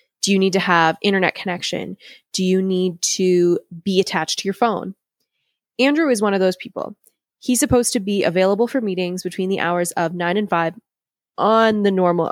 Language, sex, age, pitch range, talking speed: English, female, 20-39, 180-225 Hz, 190 wpm